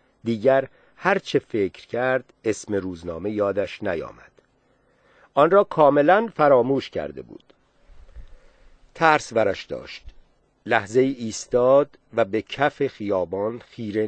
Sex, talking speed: male, 105 wpm